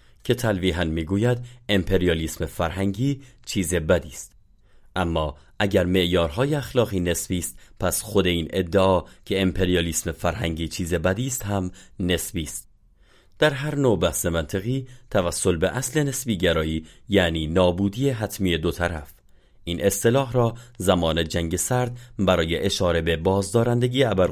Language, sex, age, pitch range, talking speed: Persian, male, 30-49, 85-115 Hz, 130 wpm